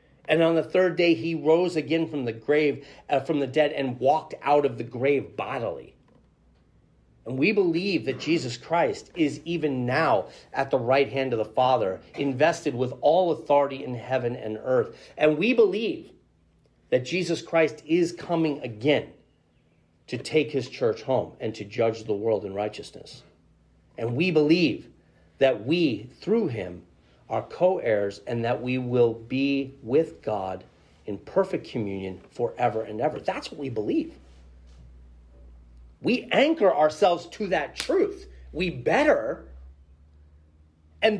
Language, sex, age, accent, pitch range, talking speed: English, male, 40-59, American, 110-175 Hz, 150 wpm